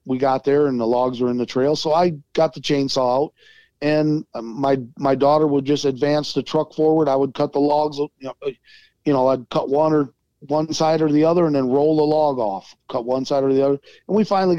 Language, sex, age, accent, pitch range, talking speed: English, male, 40-59, American, 130-155 Hz, 245 wpm